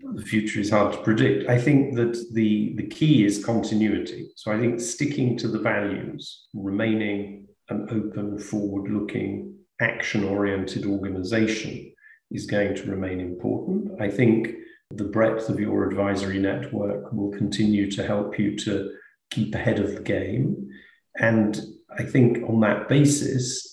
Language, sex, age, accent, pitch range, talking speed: English, male, 40-59, British, 100-120 Hz, 145 wpm